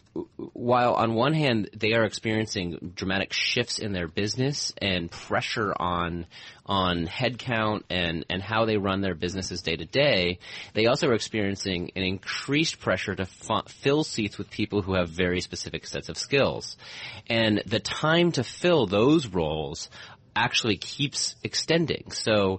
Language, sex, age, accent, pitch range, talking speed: English, male, 30-49, American, 90-115 Hz, 155 wpm